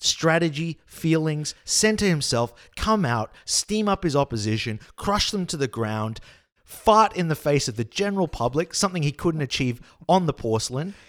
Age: 30-49